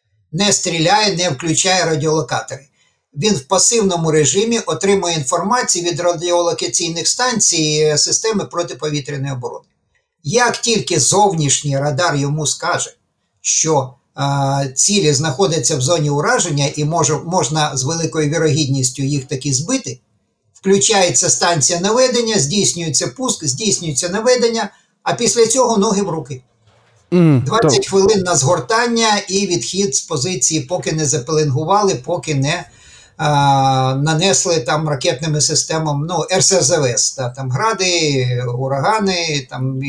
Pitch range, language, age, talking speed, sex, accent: 140-185 Hz, Ukrainian, 50-69, 115 wpm, male, native